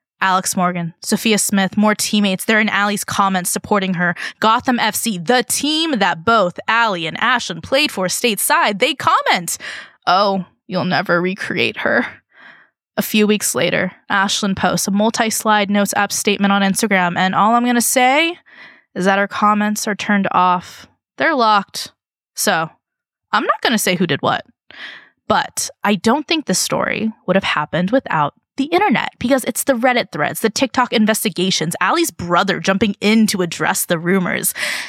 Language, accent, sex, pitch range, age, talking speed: English, American, female, 190-240 Hz, 20-39, 165 wpm